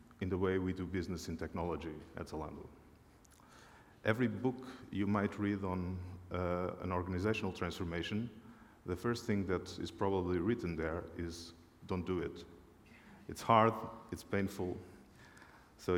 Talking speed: 140 wpm